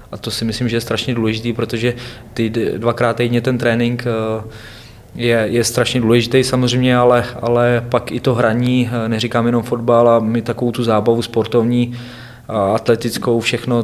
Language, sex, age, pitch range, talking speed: Czech, male, 20-39, 115-125 Hz, 155 wpm